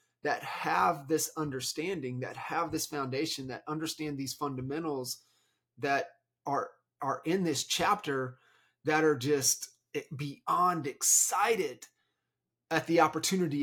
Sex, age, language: male, 30-49, English